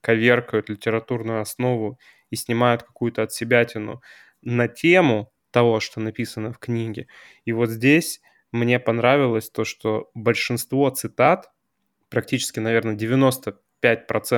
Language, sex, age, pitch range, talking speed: Russian, male, 20-39, 115-130 Hz, 105 wpm